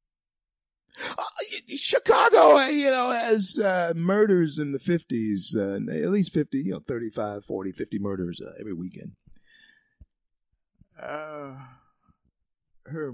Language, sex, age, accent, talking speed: English, male, 50-69, American, 110 wpm